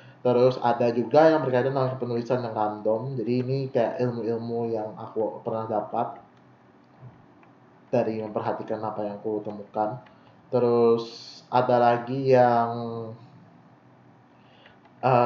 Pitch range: 105-130 Hz